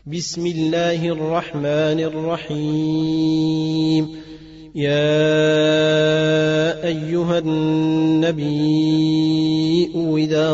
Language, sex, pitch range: Arabic, male, 155-160 Hz